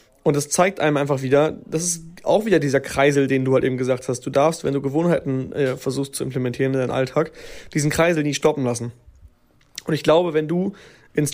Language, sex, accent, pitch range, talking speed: German, male, German, 135-155 Hz, 215 wpm